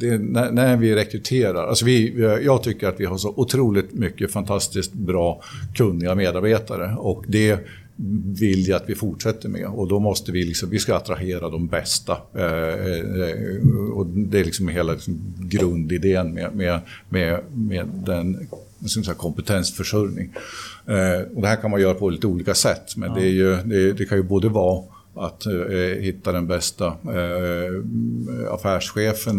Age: 50-69